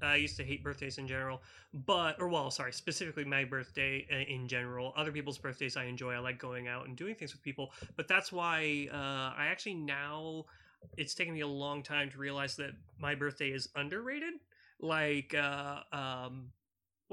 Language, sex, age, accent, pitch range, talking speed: English, male, 30-49, American, 135-165 Hz, 185 wpm